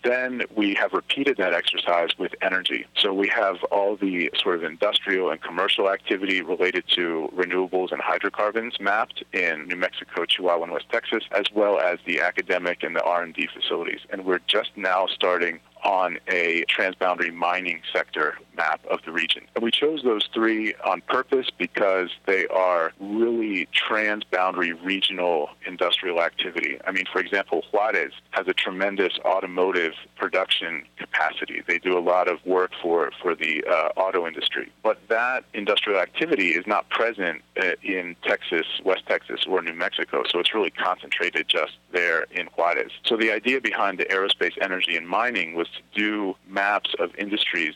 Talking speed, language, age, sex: 165 wpm, English, 40-59, male